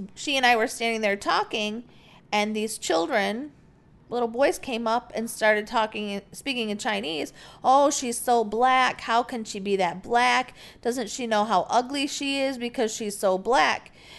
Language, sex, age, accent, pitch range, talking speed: English, female, 40-59, American, 195-255 Hz, 175 wpm